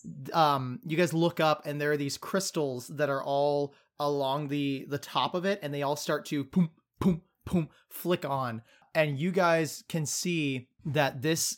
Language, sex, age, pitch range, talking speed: English, male, 30-49, 140-160 Hz, 170 wpm